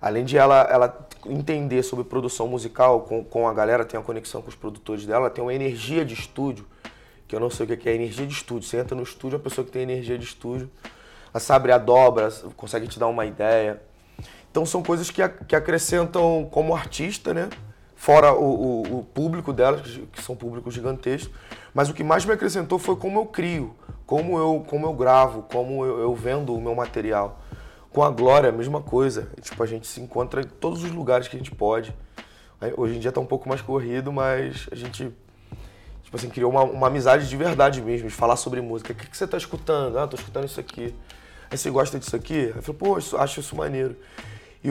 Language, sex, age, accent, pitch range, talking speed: Portuguese, male, 20-39, Brazilian, 115-145 Hz, 215 wpm